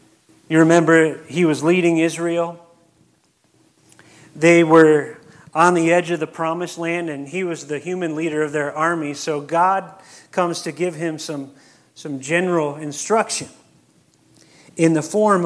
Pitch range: 155-185 Hz